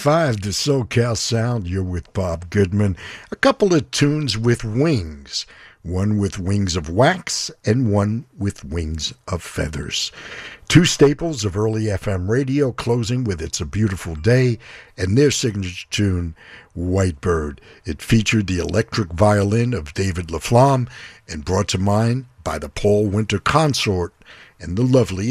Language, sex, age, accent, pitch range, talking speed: English, male, 60-79, American, 90-120 Hz, 150 wpm